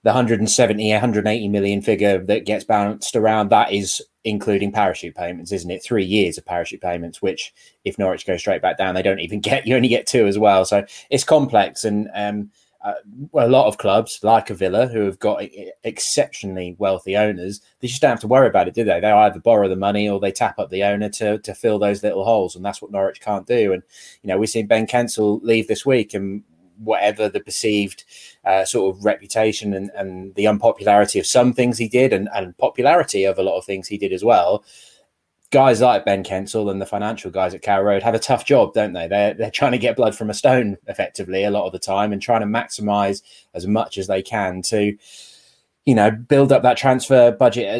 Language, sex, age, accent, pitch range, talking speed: English, male, 20-39, British, 100-120 Hz, 230 wpm